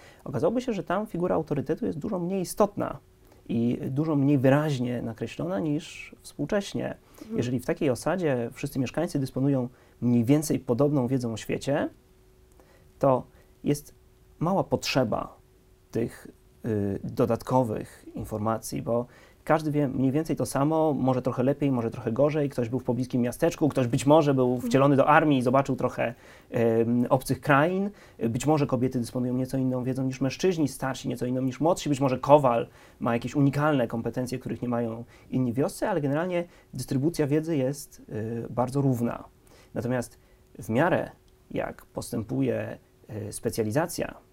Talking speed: 145 wpm